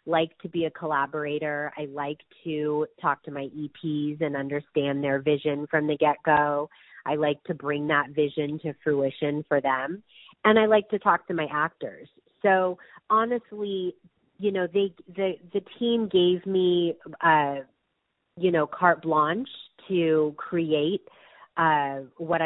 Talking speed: 150 wpm